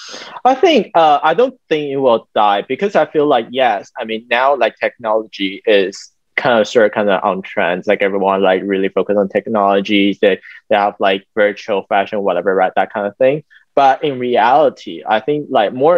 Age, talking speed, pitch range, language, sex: 20-39, 205 wpm, 100-145 Hz, English, male